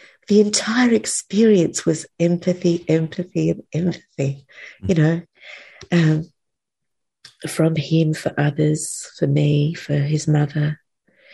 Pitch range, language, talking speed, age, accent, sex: 150-185 Hz, English, 105 wpm, 40-59, British, female